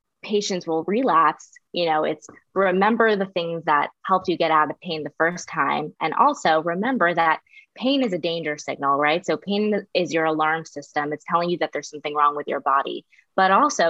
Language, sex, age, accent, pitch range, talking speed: English, female, 20-39, American, 165-200 Hz, 205 wpm